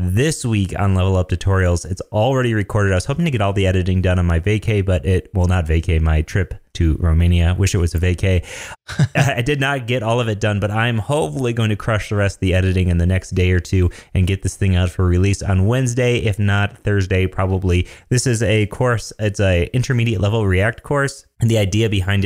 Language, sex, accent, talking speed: English, male, American, 235 wpm